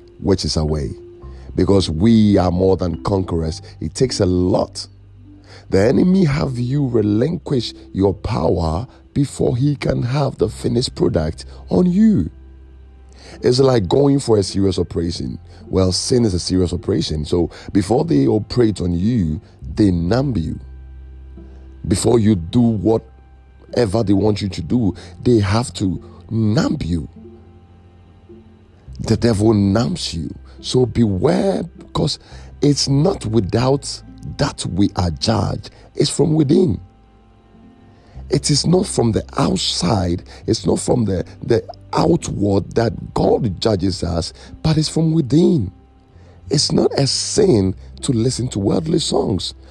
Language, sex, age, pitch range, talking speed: English, male, 50-69, 85-115 Hz, 135 wpm